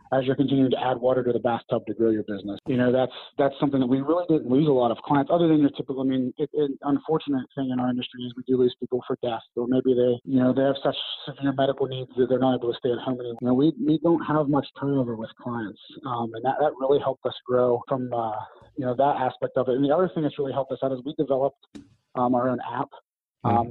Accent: American